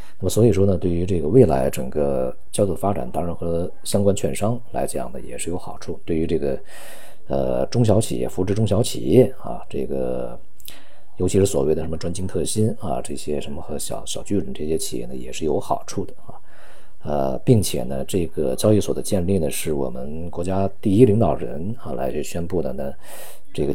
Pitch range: 75-100 Hz